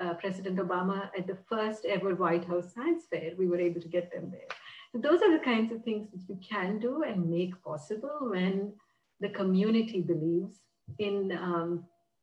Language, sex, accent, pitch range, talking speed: English, female, Indian, 170-205 Hz, 185 wpm